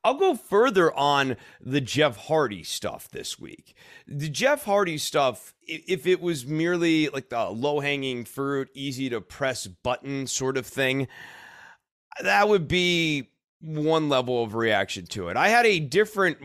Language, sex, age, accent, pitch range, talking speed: English, male, 30-49, American, 120-160 Hz, 145 wpm